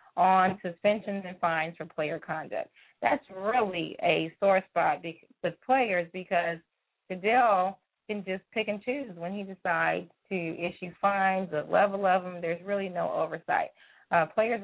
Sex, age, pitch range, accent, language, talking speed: female, 20-39, 170-205 Hz, American, English, 155 wpm